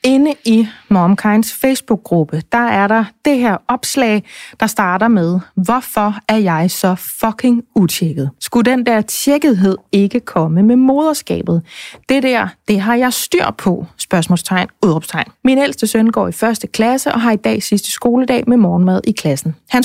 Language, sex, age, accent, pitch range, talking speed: Danish, female, 30-49, native, 190-250 Hz, 165 wpm